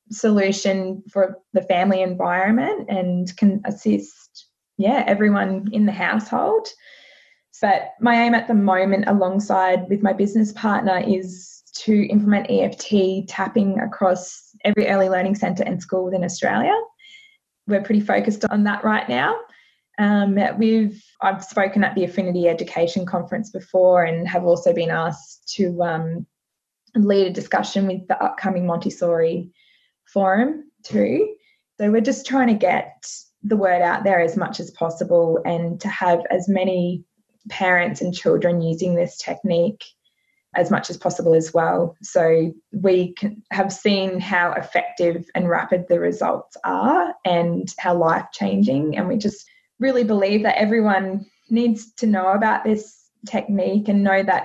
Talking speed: 150 wpm